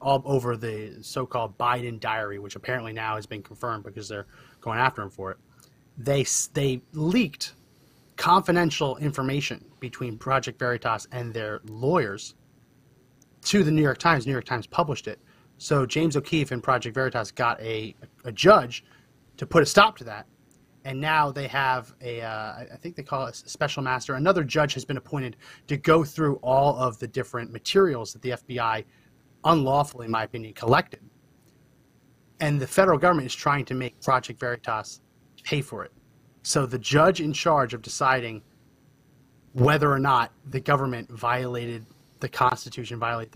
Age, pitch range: 30-49, 120-150 Hz